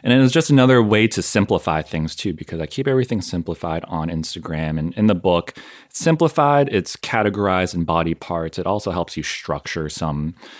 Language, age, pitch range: English, 30-49, 85-110 Hz